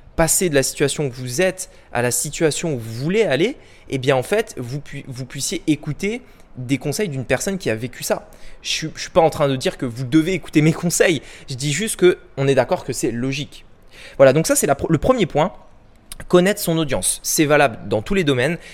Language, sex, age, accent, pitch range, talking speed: French, male, 20-39, French, 135-180 Hz, 230 wpm